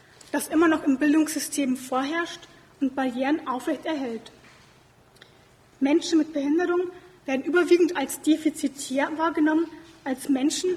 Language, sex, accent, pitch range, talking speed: German, female, German, 275-325 Hz, 110 wpm